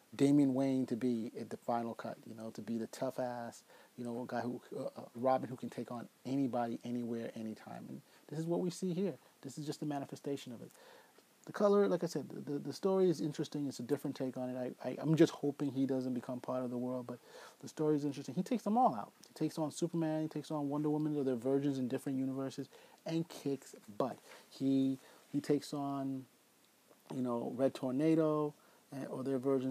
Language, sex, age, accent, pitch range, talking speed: English, male, 30-49, American, 125-150 Hz, 225 wpm